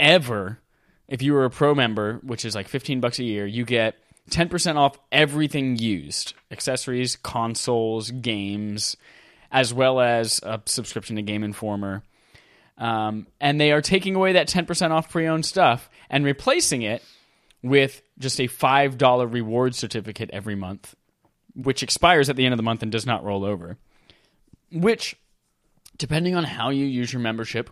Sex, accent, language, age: male, American, English, 10-29